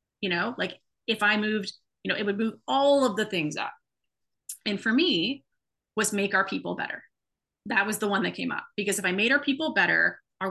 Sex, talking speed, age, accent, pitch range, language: female, 225 wpm, 30-49, American, 195-265 Hz, English